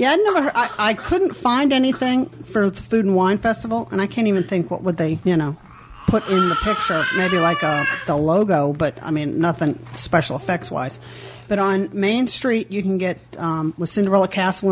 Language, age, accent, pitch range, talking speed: English, 40-59, American, 165-205 Hz, 210 wpm